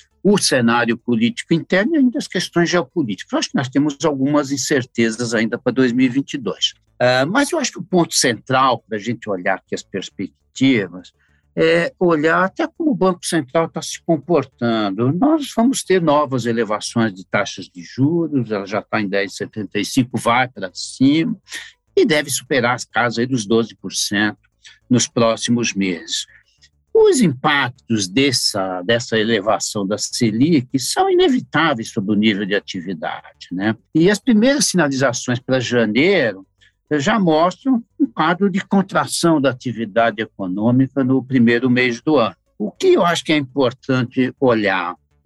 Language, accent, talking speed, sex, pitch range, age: Portuguese, Brazilian, 150 wpm, male, 115-170 Hz, 60-79